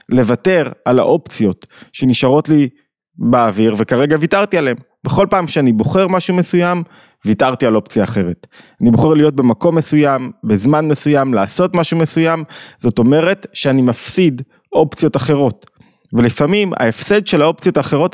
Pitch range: 120-165 Hz